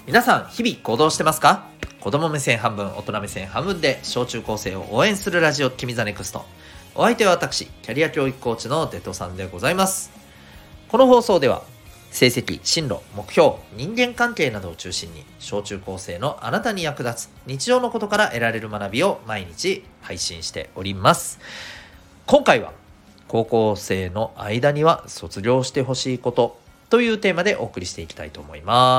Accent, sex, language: native, male, Japanese